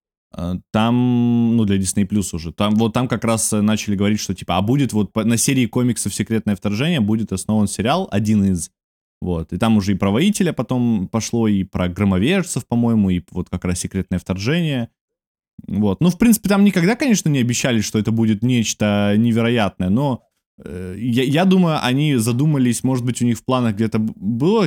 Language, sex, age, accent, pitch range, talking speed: Russian, male, 20-39, native, 100-125 Hz, 185 wpm